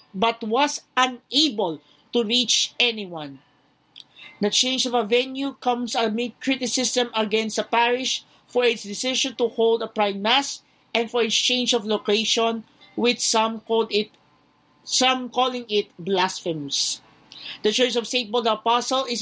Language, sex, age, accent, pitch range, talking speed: Filipino, male, 50-69, native, 215-250 Hz, 145 wpm